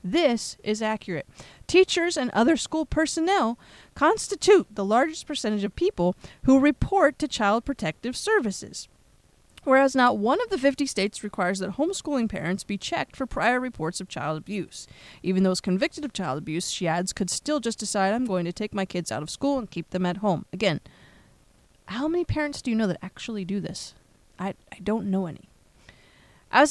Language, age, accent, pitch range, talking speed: English, 30-49, American, 185-270 Hz, 185 wpm